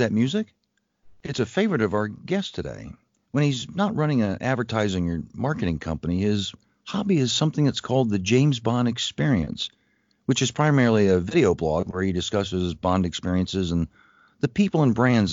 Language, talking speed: English, 170 wpm